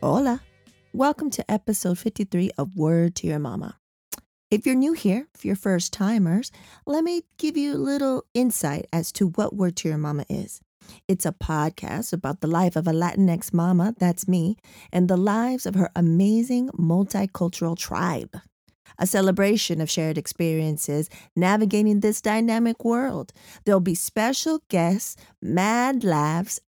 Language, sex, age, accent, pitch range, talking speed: English, female, 40-59, American, 175-230 Hz, 155 wpm